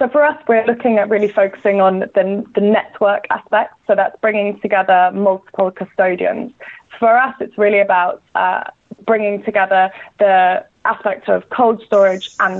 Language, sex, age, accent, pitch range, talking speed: English, female, 20-39, British, 190-220 Hz, 155 wpm